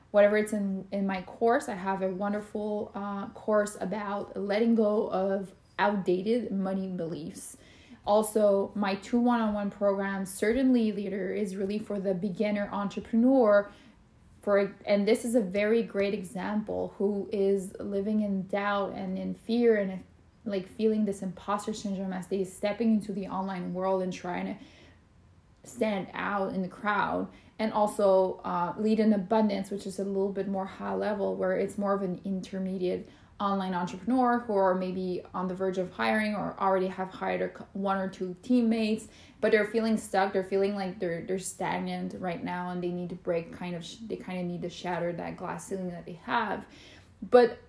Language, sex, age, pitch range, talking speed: English, female, 20-39, 185-210 Hz, 175 wpm